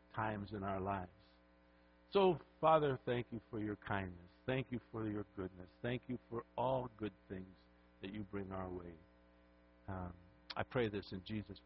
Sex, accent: male, American